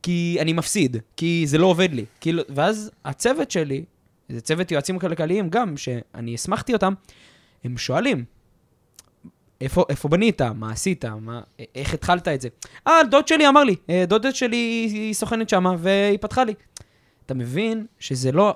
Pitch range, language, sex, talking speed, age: 125-180 Hz, Hebrew, male, 160 wpm, 20-39